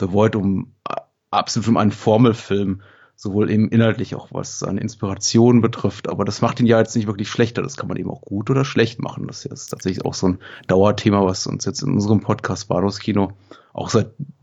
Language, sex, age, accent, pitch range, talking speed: German, male, 30-49, German, 100-120 Hz, 205 wpm